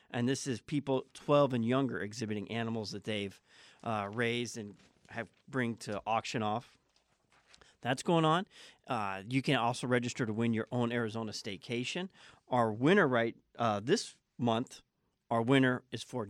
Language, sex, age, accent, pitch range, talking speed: English, male, 40-59, American, 110-130 Hz, 160 wpm